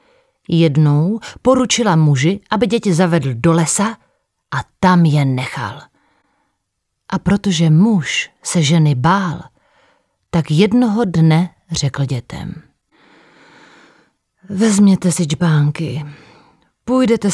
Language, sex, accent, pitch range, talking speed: Czech, female, native, 145-210 Hz, 95 wpm